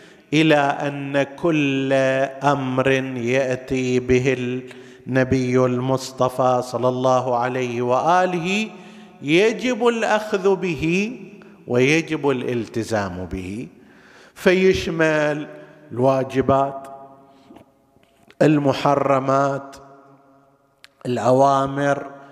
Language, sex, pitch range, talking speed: Arabic, male, 130-170 Hz, 60 wpm